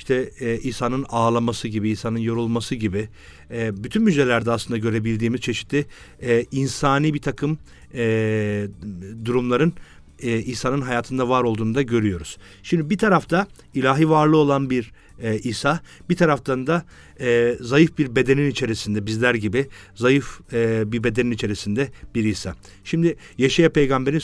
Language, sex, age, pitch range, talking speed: Turkish, male, 50-69, 110-145 Hz, 140 wpm